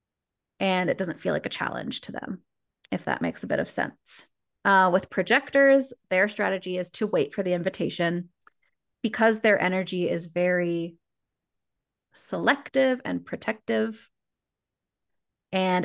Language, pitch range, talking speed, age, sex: English, 180-210 Hz, 135 wpm, 20-39, female